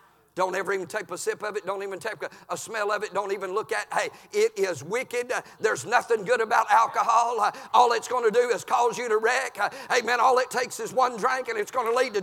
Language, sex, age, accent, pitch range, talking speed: English, male, 50-69, American, 170-275 Hz, 275 wpm